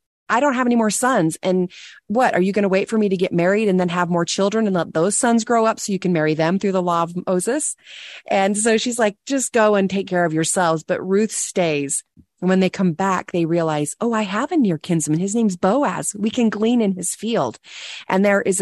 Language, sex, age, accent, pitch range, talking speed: English, female, 30-49, American, 160-205 Hz, 250 wpm